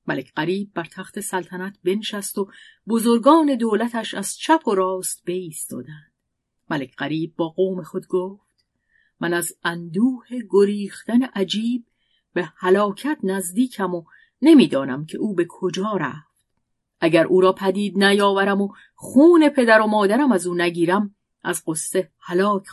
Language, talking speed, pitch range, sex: Persian, 135 wpm, 170-220 Hz, female